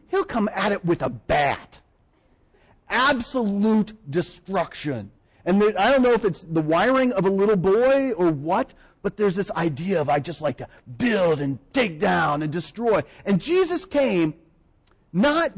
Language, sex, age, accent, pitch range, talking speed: English, male, 40-59, American, 135-200 Hz, 160 wpm